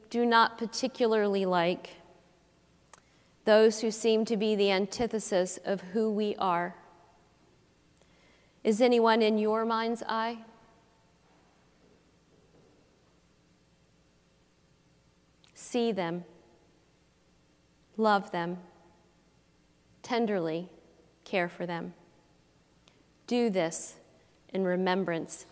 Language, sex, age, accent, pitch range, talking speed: English, female, 40-59, American, 175-230 Hz, 80 wpm